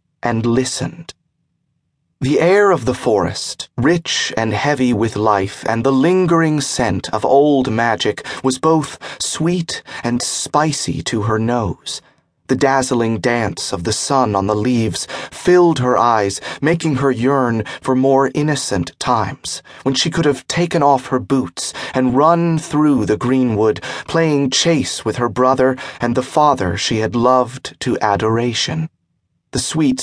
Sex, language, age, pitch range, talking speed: male, English, 30-49, 115-150 Hz, 150 wpm